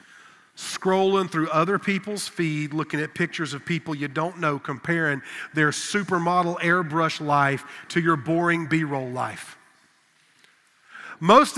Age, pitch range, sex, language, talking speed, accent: 40-59, 155-200 Hz, male, English, 125 wpm, American